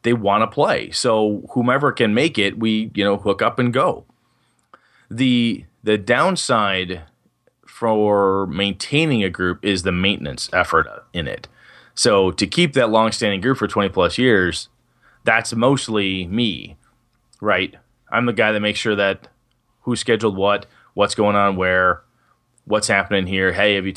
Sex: male